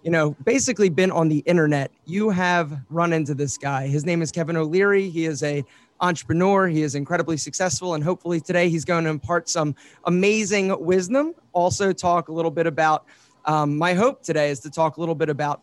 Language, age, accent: English, 30-49, American